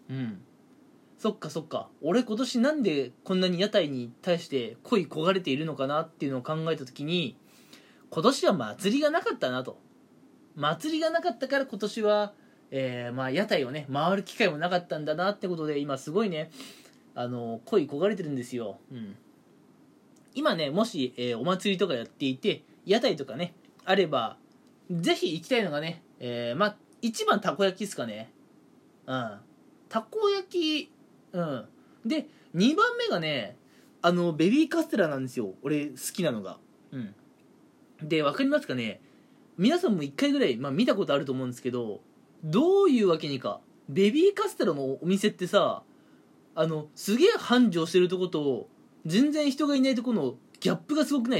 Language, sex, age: Japanese, male, 20-39